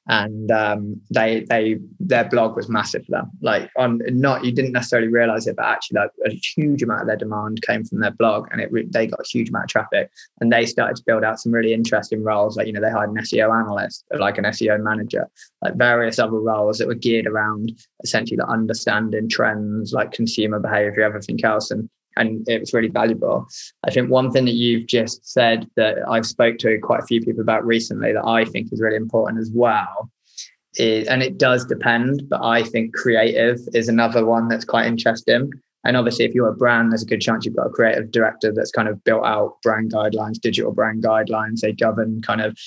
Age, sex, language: 20-39, male, English